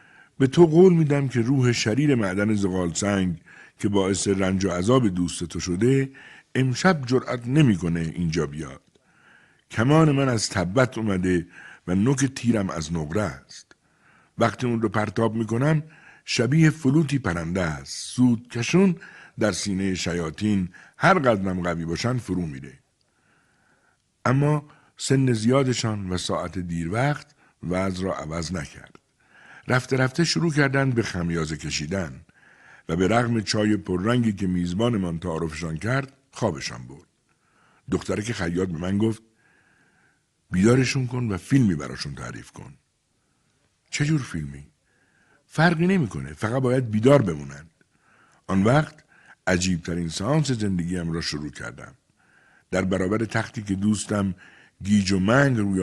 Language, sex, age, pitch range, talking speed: Persian, male, 60-79, 90-130 Hz, 130 wpm